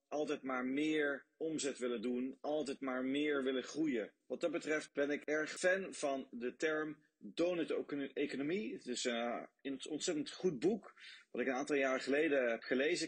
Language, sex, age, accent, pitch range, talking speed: Dutch, male, 30-49, Dutch, 125-165 Hz, 165 wpm